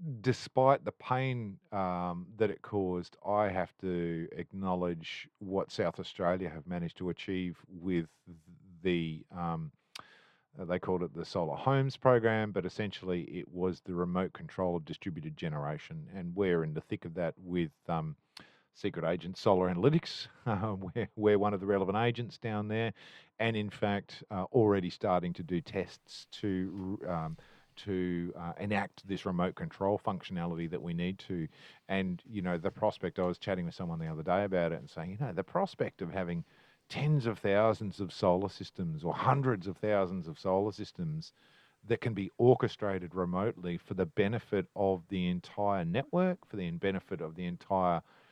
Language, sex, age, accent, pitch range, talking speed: English, male, 40-59, Australian, 90-110 Hz, 170 wpm